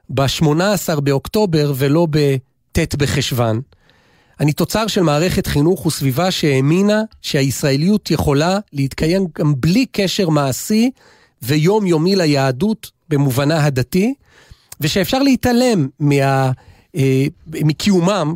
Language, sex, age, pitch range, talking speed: Hebrew, male, 40-59, 140-195 Hz, 95 wpm